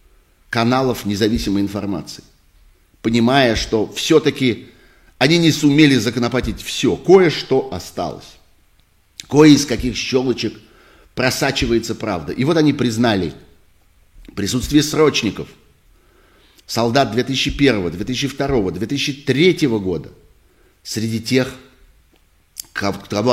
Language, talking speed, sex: Russian, 85 wpm, male